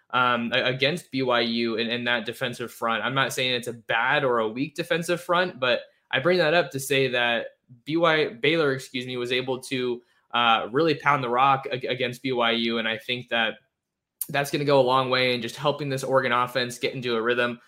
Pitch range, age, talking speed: 120-140 Hz, 20-39, 215 wpm